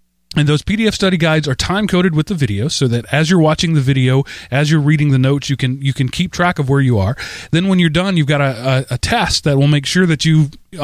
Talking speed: 265 wpm